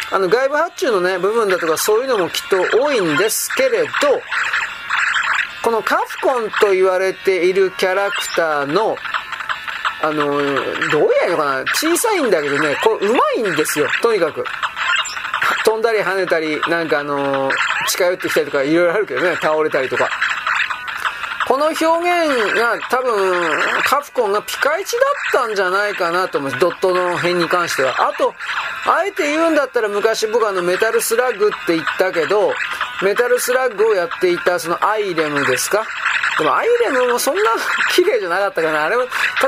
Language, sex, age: Japanese, male, 40-59